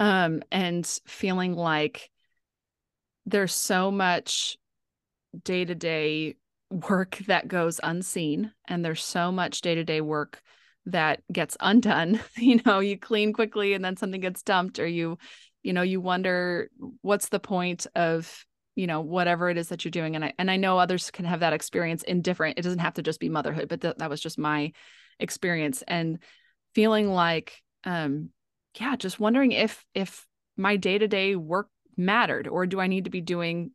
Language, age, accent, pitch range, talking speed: English, 20-39, American, 165-195 Hz, 165 wpm